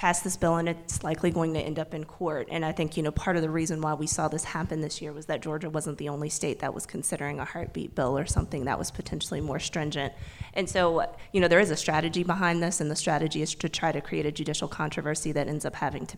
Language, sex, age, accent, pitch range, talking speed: English, female, 20-39, American, 155-180 Hz, 275 wpm